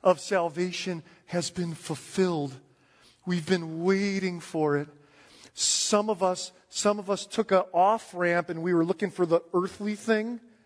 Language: English